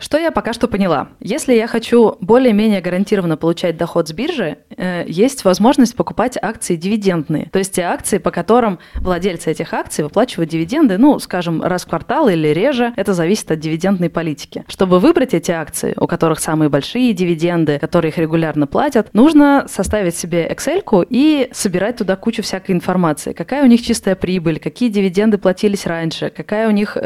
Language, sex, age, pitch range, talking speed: Russian, female, 20-39, 170-215 Hz, 170 wpm